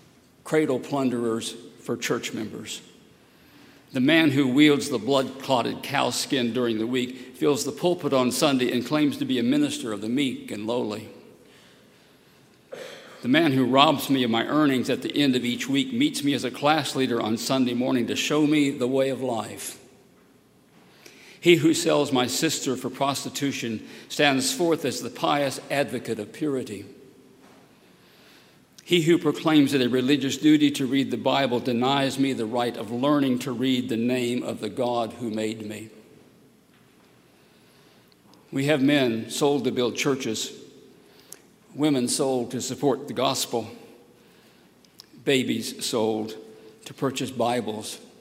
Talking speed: 150 wpm